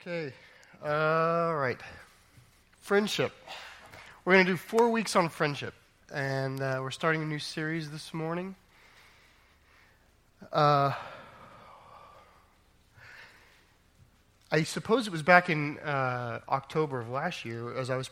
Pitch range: 125-160 Hz